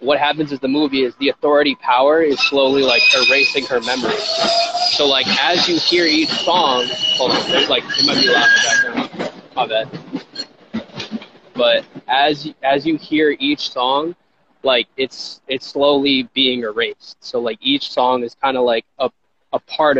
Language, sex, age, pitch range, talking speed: English, male, 20-39, 110-140 Hz, 160 wpm